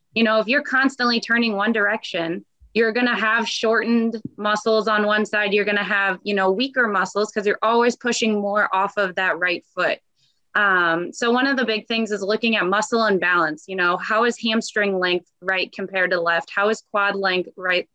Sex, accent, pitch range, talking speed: female, American, 185-225 Hz, 200 wpm